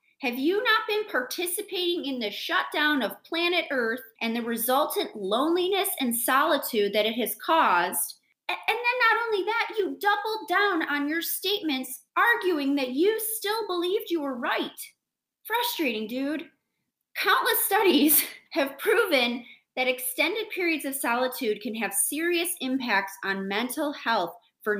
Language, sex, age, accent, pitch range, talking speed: English, female, 30-49, American, 220-335 Hz, 145 wpm